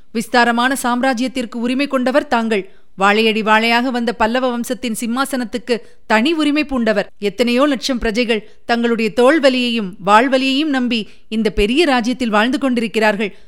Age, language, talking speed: 30-49, Tamil, 115 wpm